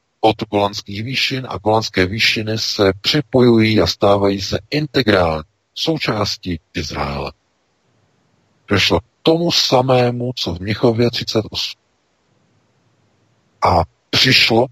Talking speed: 100 wpm